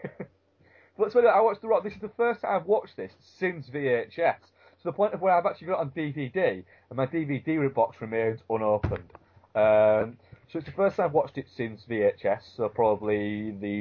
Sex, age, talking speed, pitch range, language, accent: male, 20-39, 210 wpm, 100-125 Hz, English, British